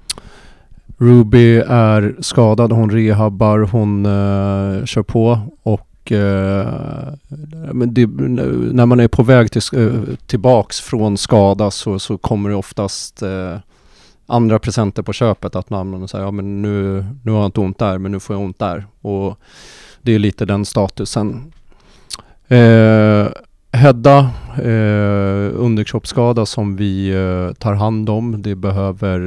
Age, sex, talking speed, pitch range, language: 30-49, male, 145 wpm, 100-115 Hz, Swedish